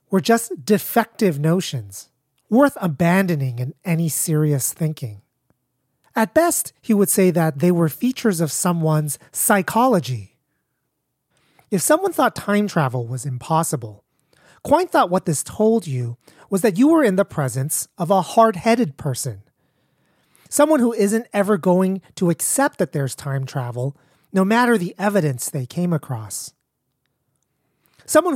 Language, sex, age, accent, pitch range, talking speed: English, male, 30-49, American, 140-215 Hz, 140 wpm